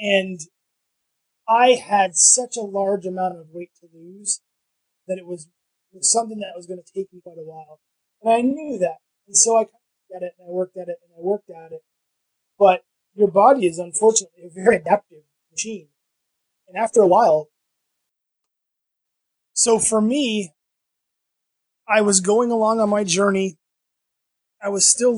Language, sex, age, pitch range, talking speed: English, male, 20-39, 175-205 Hz, 170 wpm